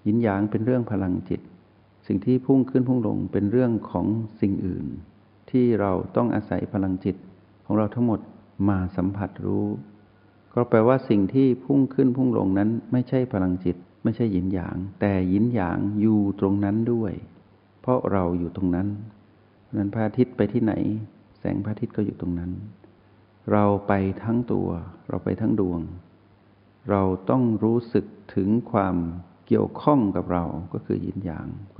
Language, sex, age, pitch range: Thai, male, 60-79, 95-115 Hz